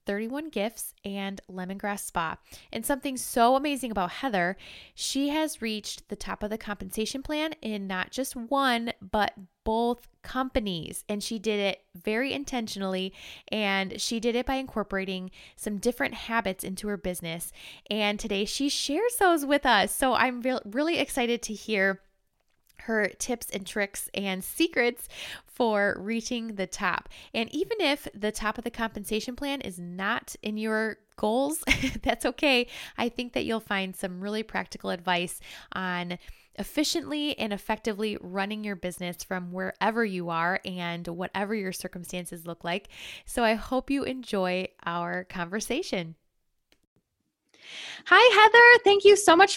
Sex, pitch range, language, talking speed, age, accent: female, 195-265 Hz, English, 150 wpm, 20-39, American